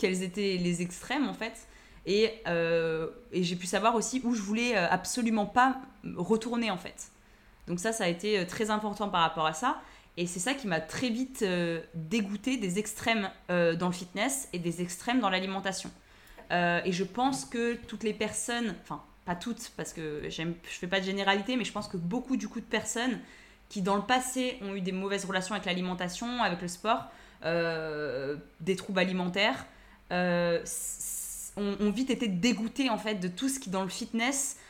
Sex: female